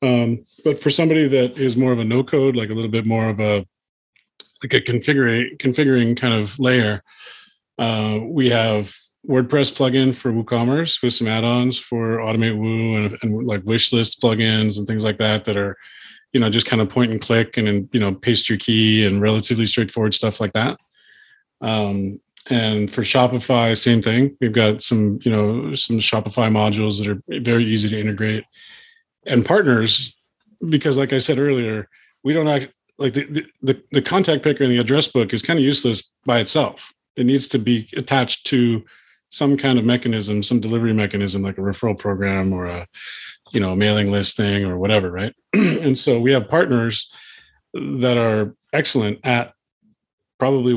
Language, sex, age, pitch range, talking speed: English, male, 30-49, 110-130 Hz, 180 wpm